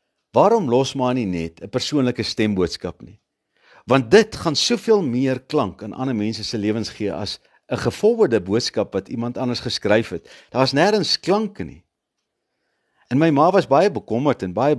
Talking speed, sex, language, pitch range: 160 wpm, male, English, 100-140 Hz